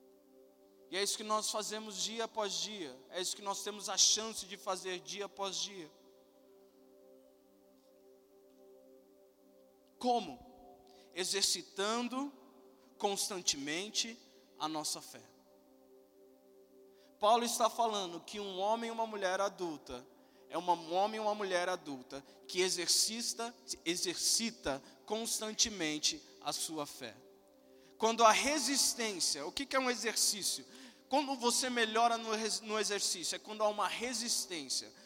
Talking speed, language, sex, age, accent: 120 wpm, Portuguese, male, 20-39, Brazilian